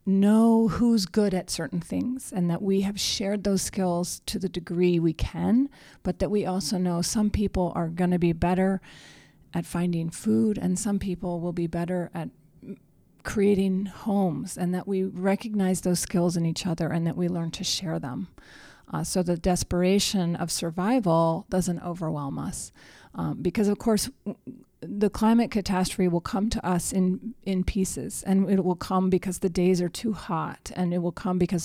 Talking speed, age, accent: 185 wpm, 40-59, American